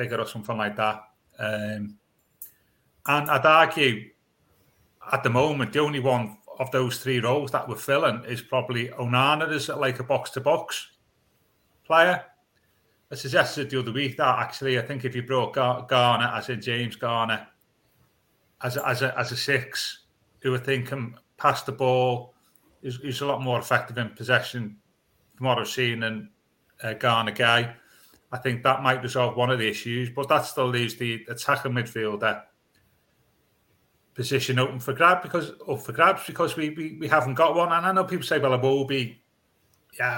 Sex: male